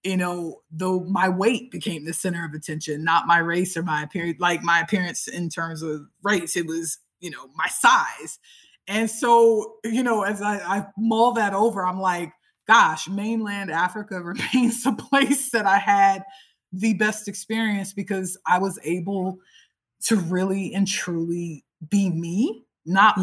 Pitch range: 170-205 Hz